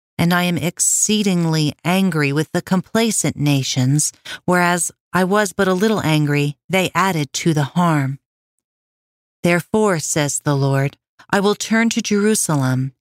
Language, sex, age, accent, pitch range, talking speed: English, female, 40-59, American, 140-190 Hz, 140 wpm